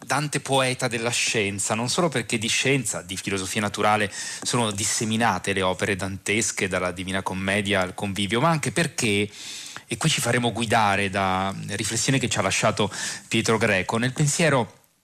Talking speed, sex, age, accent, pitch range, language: 160 wpm, male, 20-39, native, 100-125 Hz, Italian